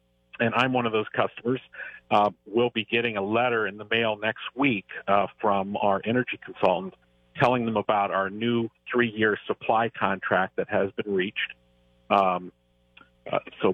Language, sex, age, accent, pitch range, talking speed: English, male, 50-69, American, 100-125 Hz, 160 wpm